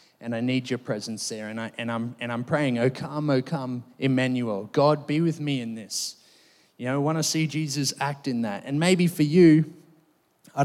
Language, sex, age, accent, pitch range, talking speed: English, male, 20-39, Australian, 125-155 Hz, 220 wpm